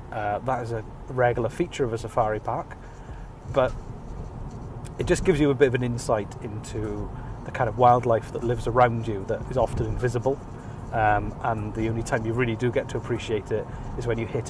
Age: 30-49